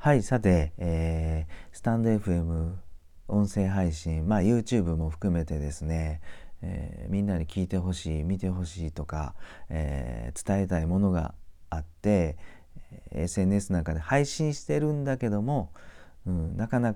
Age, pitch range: 40-59, 80-105 Hz